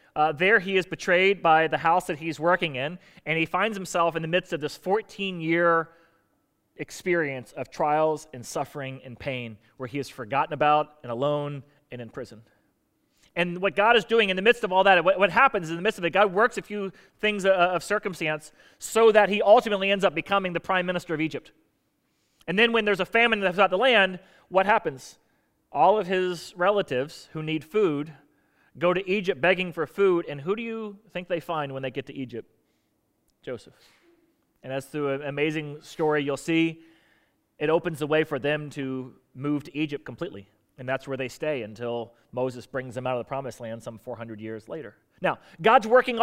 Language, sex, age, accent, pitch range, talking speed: English, male, 30-49, American, 140-195 Hz, 200 wpm